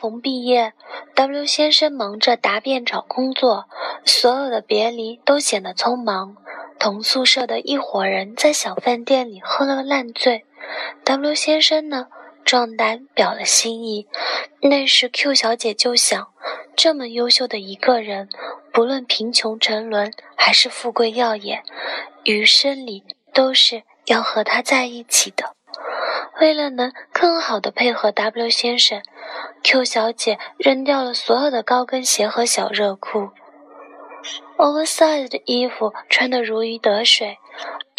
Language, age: Chinese, 20-39